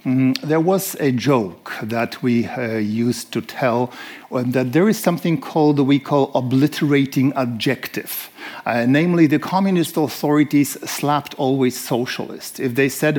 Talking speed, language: 140 wpm, English